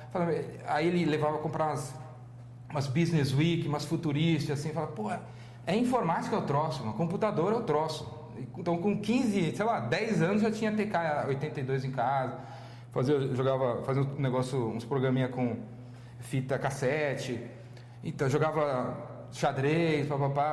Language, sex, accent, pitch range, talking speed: Portuguese, male, Brazilian, 130-175 Hz, 160 wpm